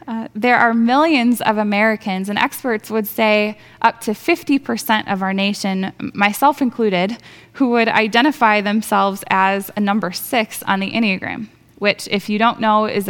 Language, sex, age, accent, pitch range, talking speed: English, female, 10-29, American, 190-230 Hz, 160 wpm